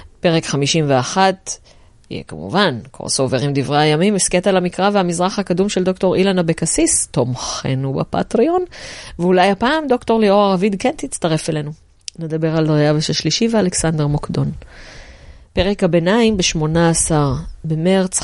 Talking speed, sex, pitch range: 120 wpm, female, 130-175 Hz